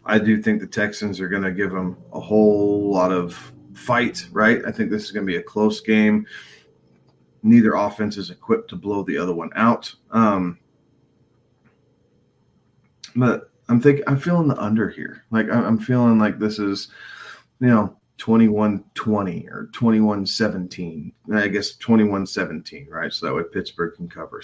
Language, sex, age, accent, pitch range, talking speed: English, male, 30-49, American, 95-115 Hz, 170 wpm